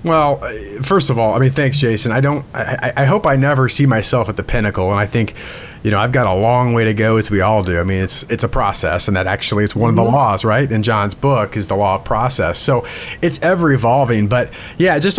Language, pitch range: English, 105-135 Hz